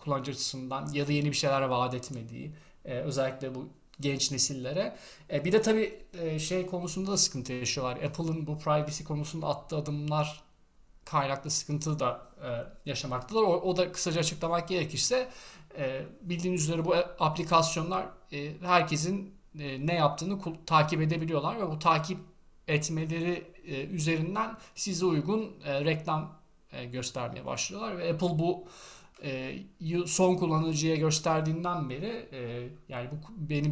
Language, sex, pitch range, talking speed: Turkish, male, 135-170 Hz, 115 wpm